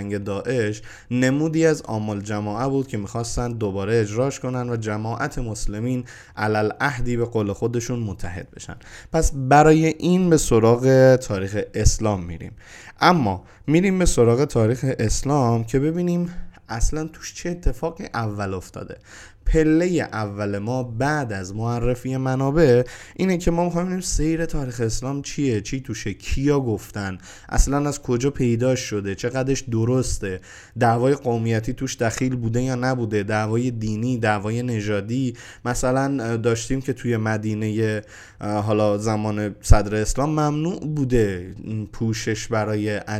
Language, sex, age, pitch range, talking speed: Persian, male, 20-39, 105-130 Hz, 130 wpm